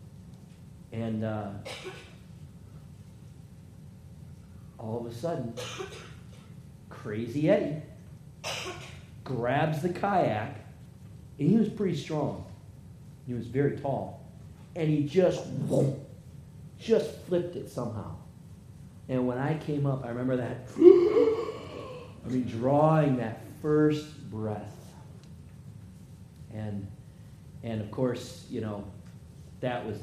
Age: 40-59